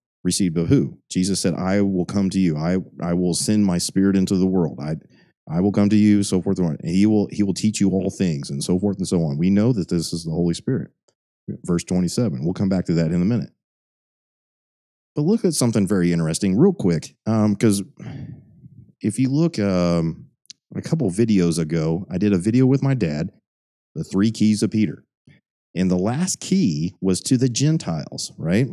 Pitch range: 85-115 Hz